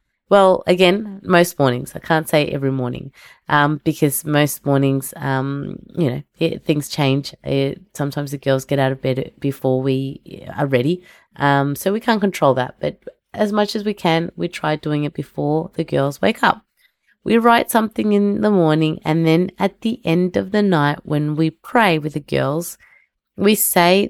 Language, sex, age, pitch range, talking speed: English, female, 20-39, 140-175 Hz, 180 wpm